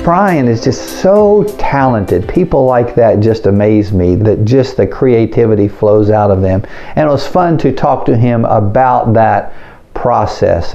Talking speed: 170 wpm